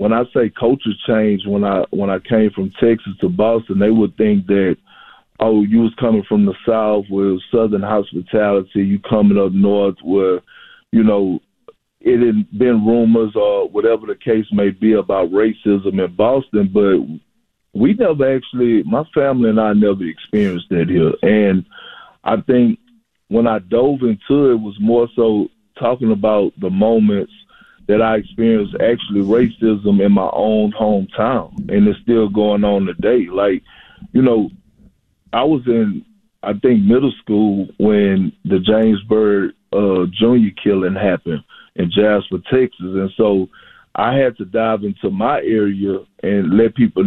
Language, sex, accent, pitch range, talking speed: English, male, American, 100-115 Hz, 160 wpm